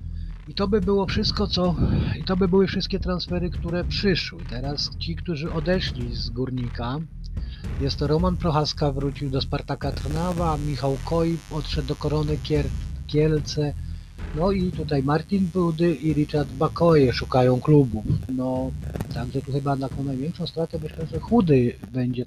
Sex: male